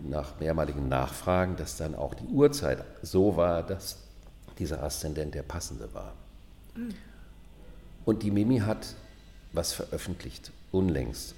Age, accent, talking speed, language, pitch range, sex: 50-69, German, 120 wpm, German, 70-95 Hz, male